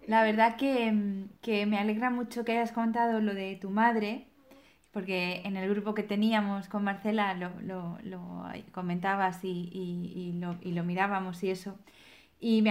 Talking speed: 175 wpm